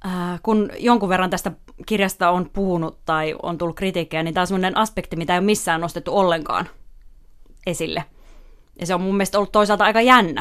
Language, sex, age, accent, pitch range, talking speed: Finnish, female, 20-39, native, 170-195 Hz, 185 wpm